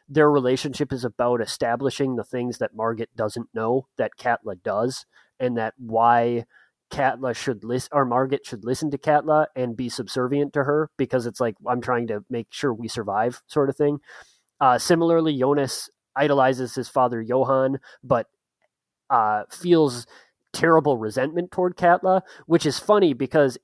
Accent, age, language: American, 30-49, English